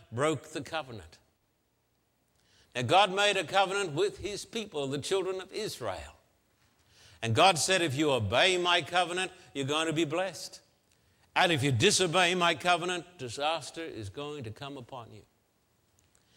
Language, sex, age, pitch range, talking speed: English, male, 60-79, 130-190 Hz, 150 wpm